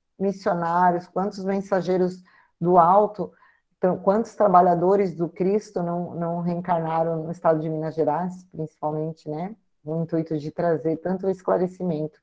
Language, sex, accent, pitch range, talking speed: Portuguese, female, Brazilian, 160-180 Hz, 125 wpm